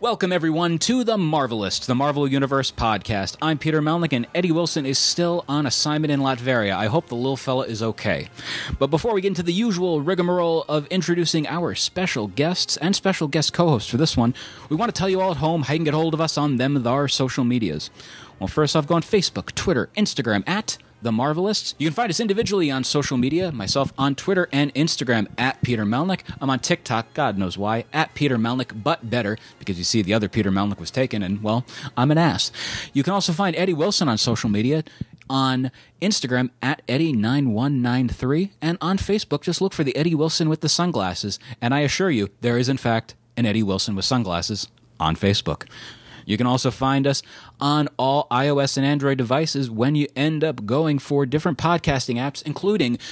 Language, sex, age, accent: English, male, 30-49, American